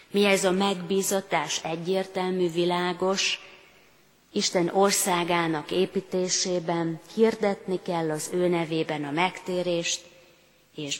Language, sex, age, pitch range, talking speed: Hungarian, female, 30-49, 160-195 Hz, 95 wpm